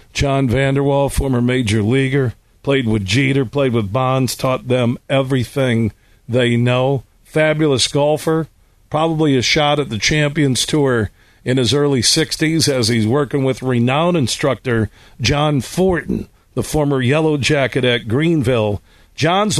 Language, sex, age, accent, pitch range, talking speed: English, male, 50-69, American, 115-150 Hz, 135 wpm